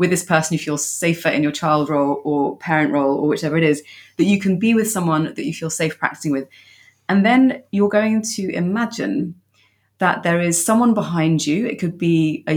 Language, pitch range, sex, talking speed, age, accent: English, 155-190 Hz, female, 215 wpm, 30-49, British